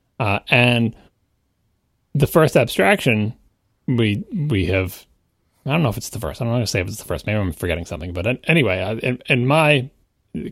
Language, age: English, 30-49